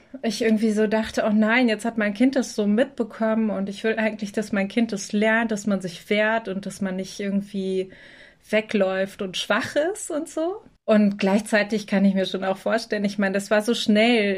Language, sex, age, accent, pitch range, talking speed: German, female, 20-39, German, 200-230 Hz, 215 wpm